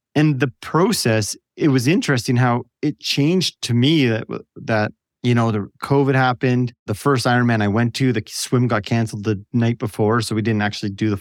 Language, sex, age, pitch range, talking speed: English, male, 30-49, 110-135 Hz, 200 wpm